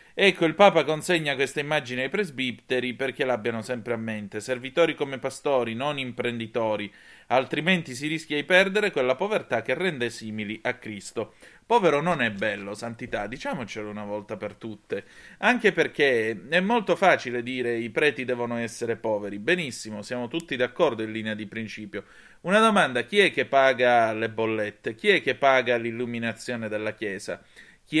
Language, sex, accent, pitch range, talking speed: Italian, male, native, 115-150 Hz, 160 wpm